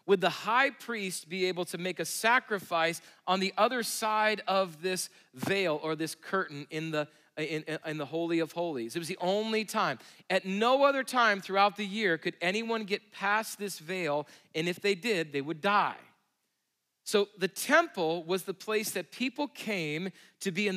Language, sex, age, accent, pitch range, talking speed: English, male, 40-59, American, 170-215 Hz, 180 wpm